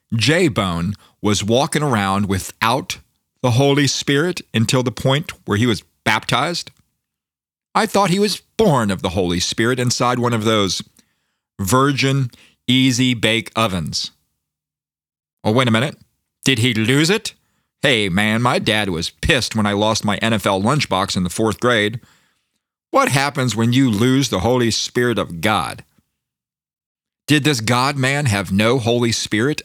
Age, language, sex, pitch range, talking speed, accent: 40-59, English, male, 105-140 Hz, 145 wpm, American